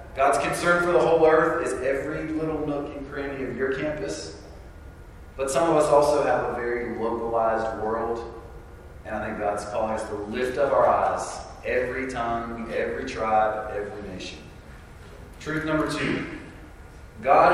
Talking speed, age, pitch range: 155 wpm, 30-49, 95-145 Hz